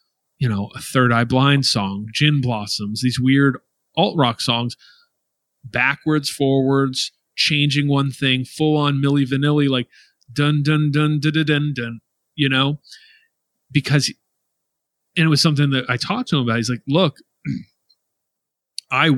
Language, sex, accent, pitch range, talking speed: English, male, American, 125-150 Hz, 150 wpm